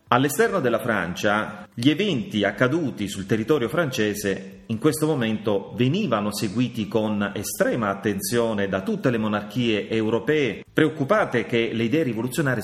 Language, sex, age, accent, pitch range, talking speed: Italian, male, 30-49, native, 105-140 Hz, 130 wpm